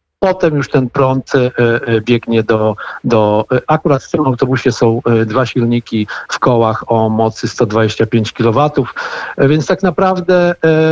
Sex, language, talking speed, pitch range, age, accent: male, Polish, 125 wpm, 120-155 Hz, 50-69, native